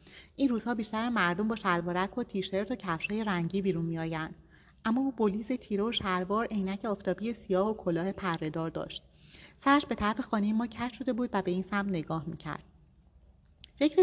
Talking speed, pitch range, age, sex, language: 175 wpm, 170-225 Hz, 30-49, female, Persian